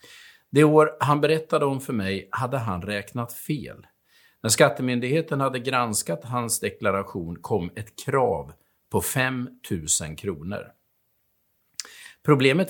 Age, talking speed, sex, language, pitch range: 50-69, 115 wpm, male, Swedish, 105-150 Hz